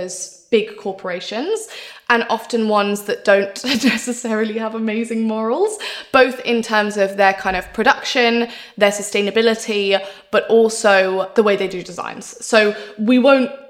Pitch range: 195-230 Hz